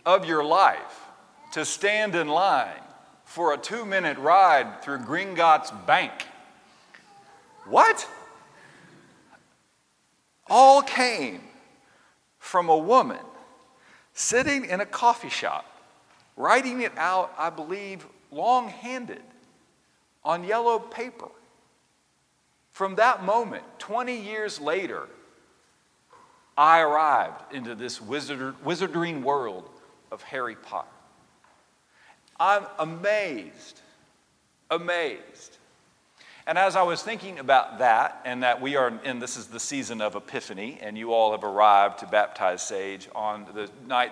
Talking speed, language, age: 110 wpm, English, 50-69